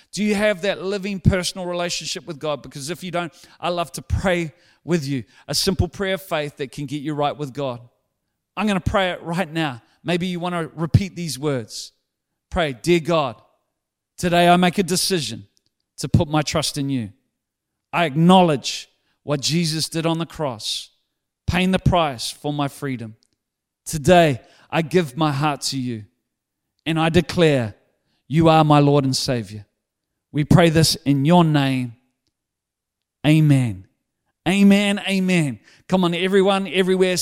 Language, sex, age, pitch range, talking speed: English, male, 40-59, 140-180 Hz, 160 wpm